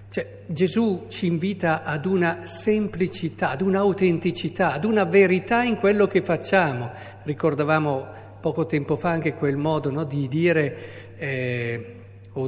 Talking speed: 135 wpm